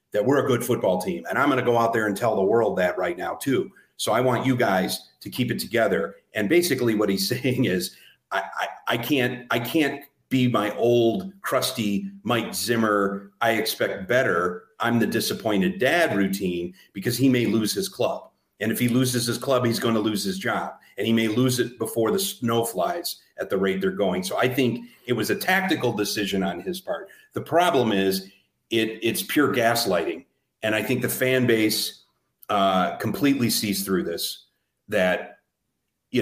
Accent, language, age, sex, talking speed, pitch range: American, English, 40-59, male, 195 wpm, 100-125 Hz